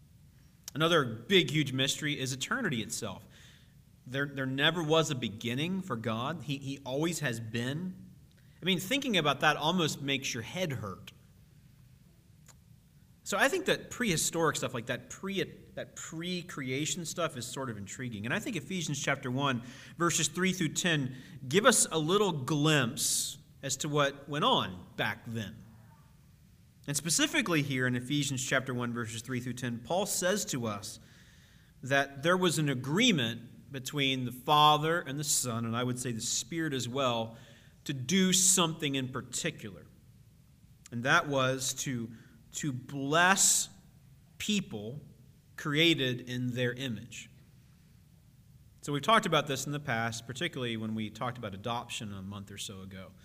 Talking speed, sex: 155 wpm, male